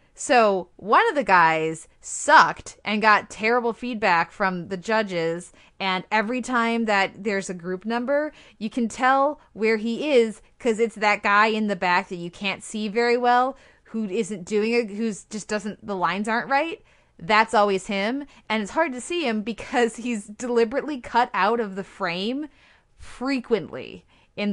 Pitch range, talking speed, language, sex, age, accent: 195-235 Hz, 170 wpm, English, female, 20-39, American